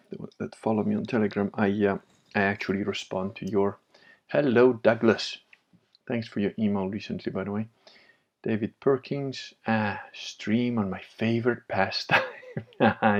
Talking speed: 135 wpm